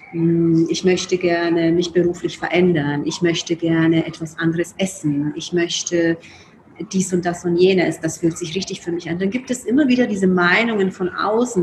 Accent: German